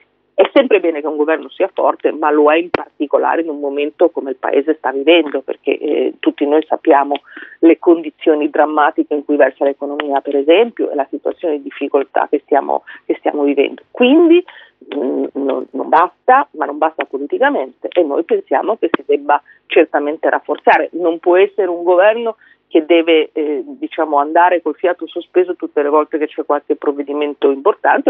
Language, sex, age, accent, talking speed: Italian, female, 40-59, native, 175 wpm